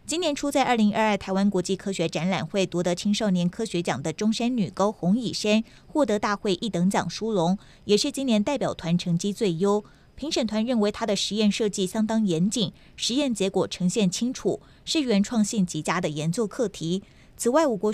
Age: 20-39